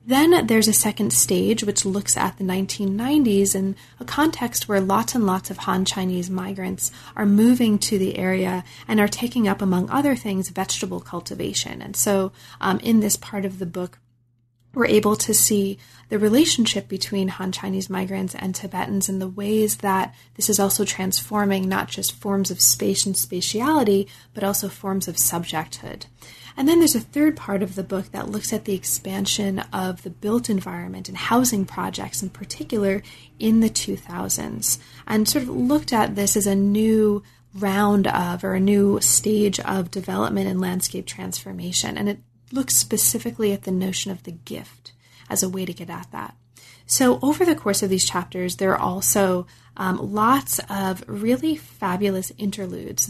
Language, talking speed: English, 175 wpm